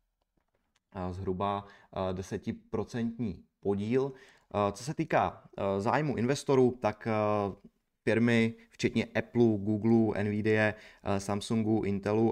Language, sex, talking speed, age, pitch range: Czech, male, 80 wpm, 20-39, 100-115 Hz